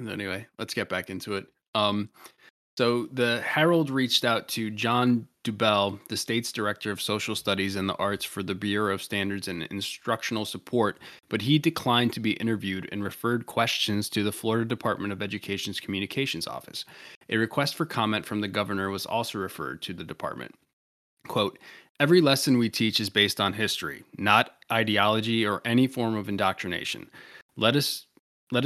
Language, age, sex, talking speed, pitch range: English, 20-39, male, 170 wpm, 100-120 Hz